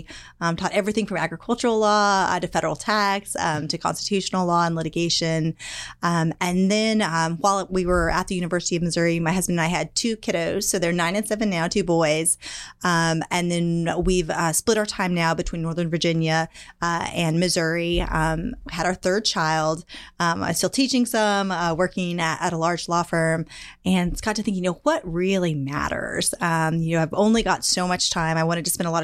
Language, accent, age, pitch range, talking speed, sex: English, American, 20-39, 165-195 Hz, 205 wpm, female